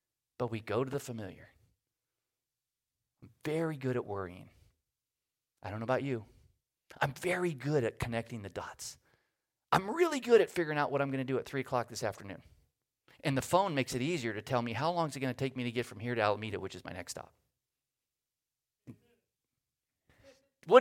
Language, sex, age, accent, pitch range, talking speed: English, male, 40-59, American, 115-140 Hz, 195 wpm